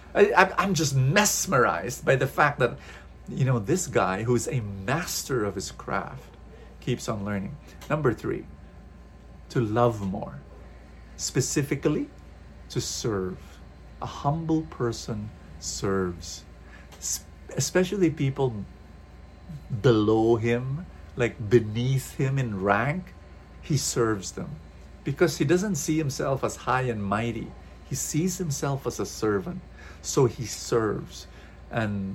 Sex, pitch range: male, 95-140 Hz